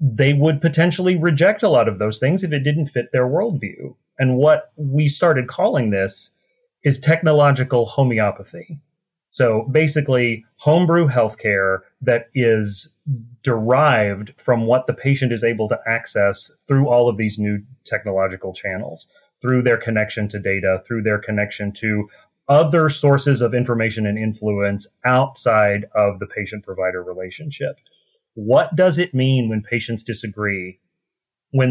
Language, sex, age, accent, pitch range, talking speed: English, male, 30-49, American, 105-140 Hz, 140 wpm